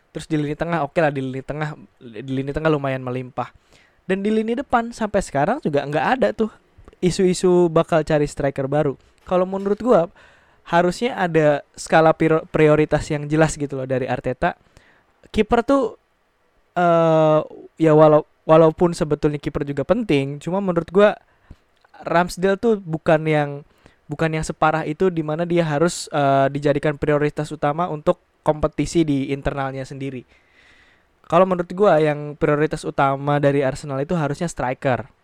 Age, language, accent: 20-39, English, Indonesian